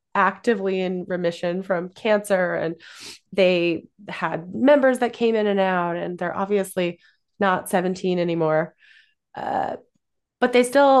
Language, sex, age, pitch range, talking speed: English, female, 20-39, 175-235 Hz, 130 wpm